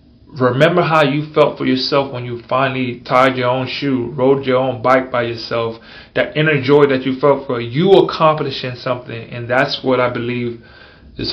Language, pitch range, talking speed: English, 120-135 Hz, 185 wpm